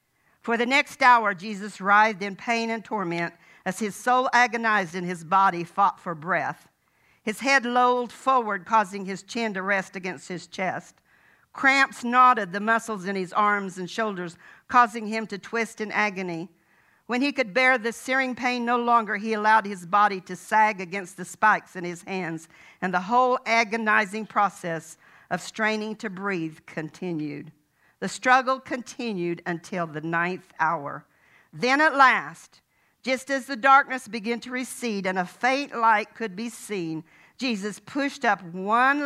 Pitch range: 185-245 Hz